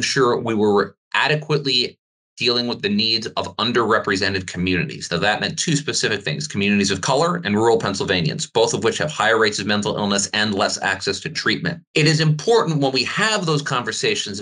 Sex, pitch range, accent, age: male, 105-145 Hz, American, 30-49